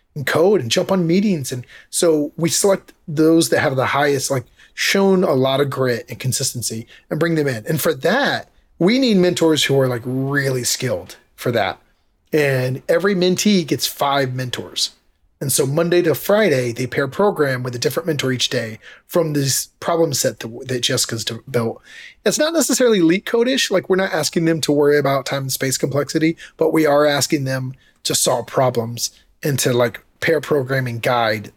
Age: 30-49